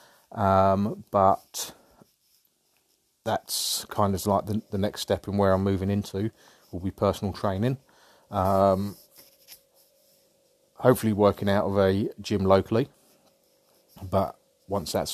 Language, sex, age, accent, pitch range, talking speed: English, male, 30-49, British, 95-105 Hz, 115 wpm